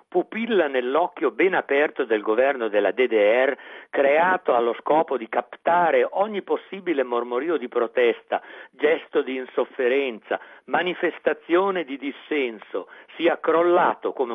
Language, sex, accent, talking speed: Italian, male, native, 115 wpm